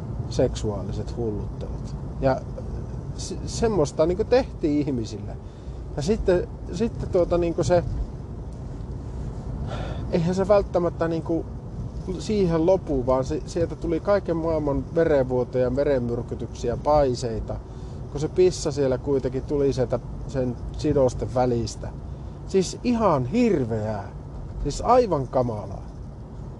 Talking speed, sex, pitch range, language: 100 wpm, male, 120-165 Hz, Finnish